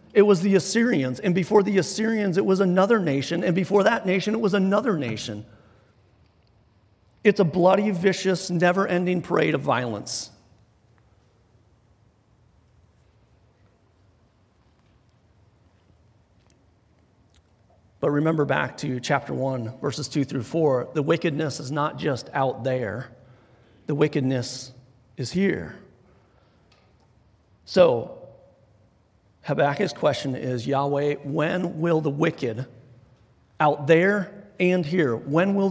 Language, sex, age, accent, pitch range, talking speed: English, male, 40-59, American, 110-160 Hz, 110 wpm